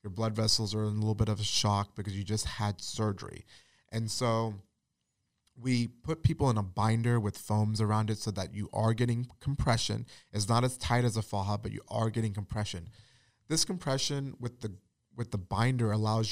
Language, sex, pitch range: English, male, 105-120 Hz